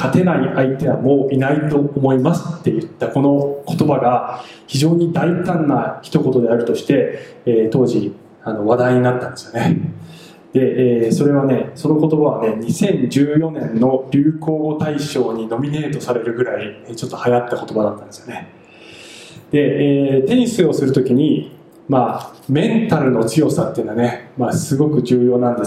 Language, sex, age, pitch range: Japanese, male, 20-39, 125-165 Hz